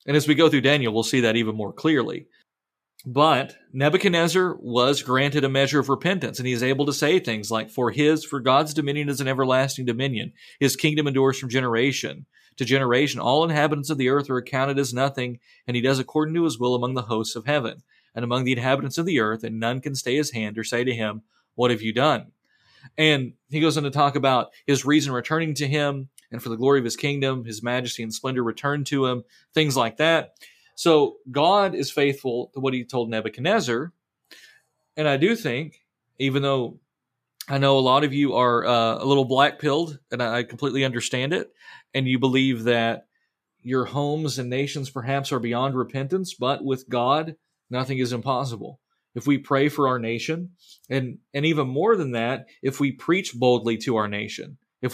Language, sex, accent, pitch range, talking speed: English, male, American, 125-150 Hz, 200 wpm